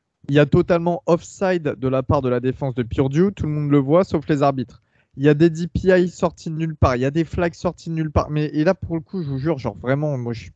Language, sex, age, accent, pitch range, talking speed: French, male, 20-39, French, 130-160 Hz, 300 wpm